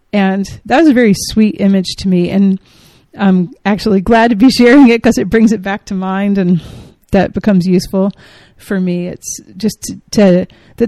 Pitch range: 180-200 Hz